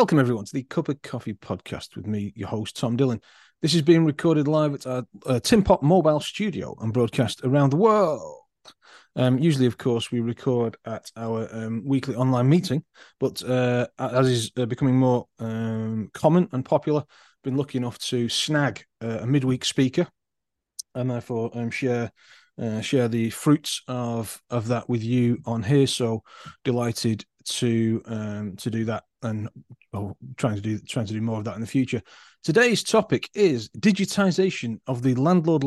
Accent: British